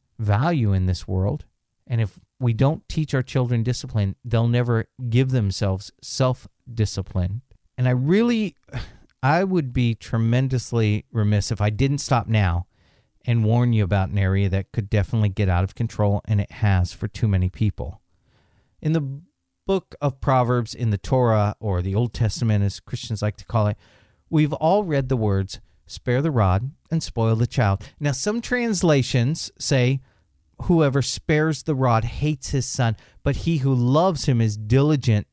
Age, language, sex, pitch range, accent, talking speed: 40-59, English, male, 100-140 Hz, American, 165 wpm